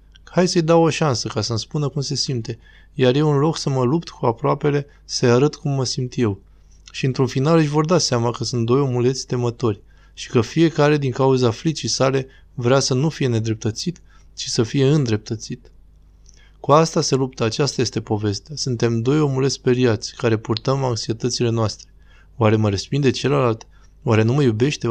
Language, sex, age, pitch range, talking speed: Romanian, male, 20-39, 110-135 Hz, 185 wpm